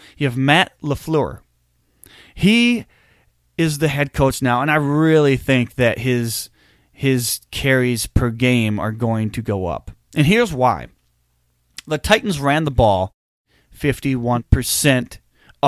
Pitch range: 100-145 Hz